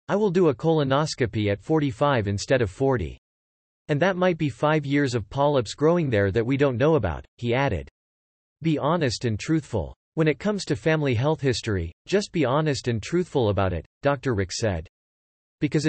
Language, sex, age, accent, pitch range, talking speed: English, male, 40-59, American, 105-155 Hz, 185 wpm